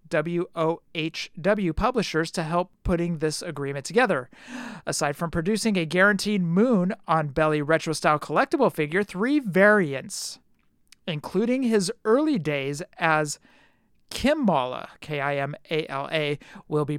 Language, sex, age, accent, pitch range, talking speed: English, male, 50-69, American, 160-220 Hz, 125 wpm